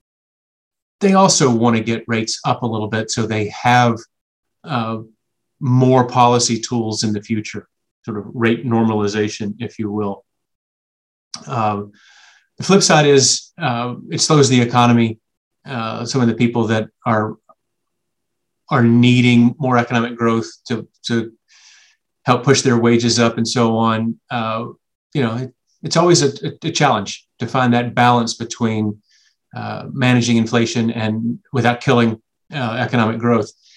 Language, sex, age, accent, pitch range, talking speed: English, male, 30-49, American, 115-130 Hz, 145 wpm